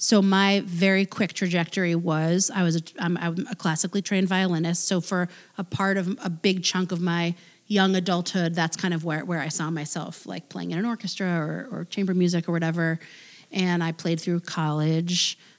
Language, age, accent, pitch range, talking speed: English, 30-49, American, 165-195 Hz, 190 wpm